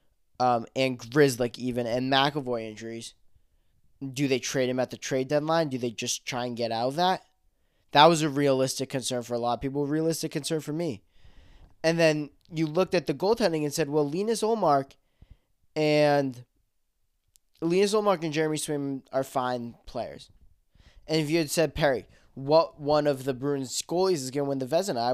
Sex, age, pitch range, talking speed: male, 10-29, 125-155 Hz, 185 wpm